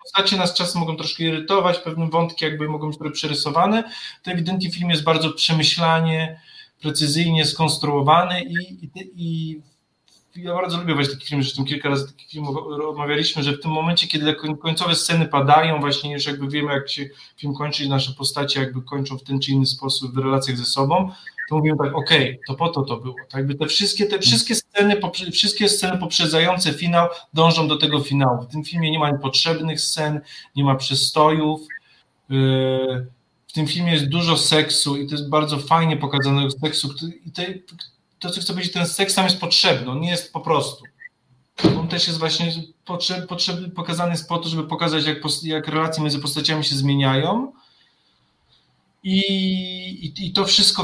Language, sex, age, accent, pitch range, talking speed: Polish, male, 20-39, native, 140-170 Hz, 175 wpm